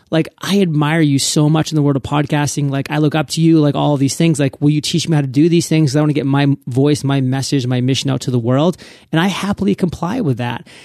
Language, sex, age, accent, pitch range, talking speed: English, male, 30-49, American, 140-185 Hz, 290 wpm